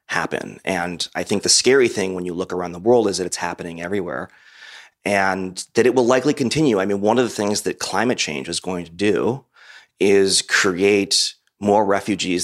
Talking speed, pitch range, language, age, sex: 200 wpm, 90-105 Hz, English, 30-49, male